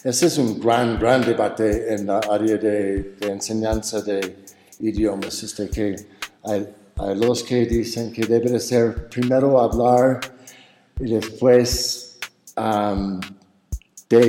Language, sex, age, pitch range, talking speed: Spanish, male, 60-79, 105-125 Hz, 130 wpm